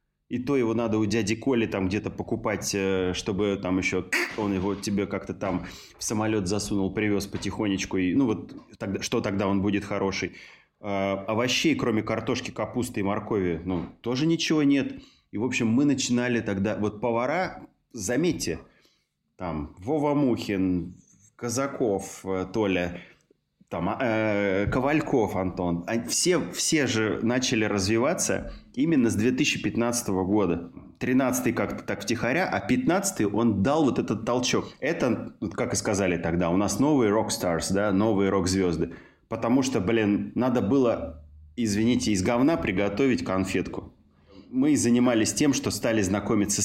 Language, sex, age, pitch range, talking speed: Russian, male, 20-39, 95-115 Hz, 140 wpm